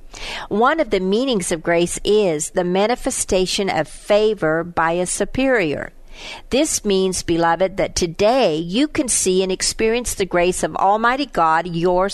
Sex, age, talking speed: female, 50-69, 150 wpm